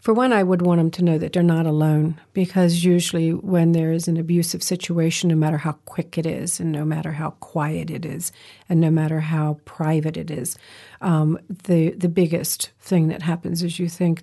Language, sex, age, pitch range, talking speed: English, female, 50-69, 160-190 Hz, 210 wpm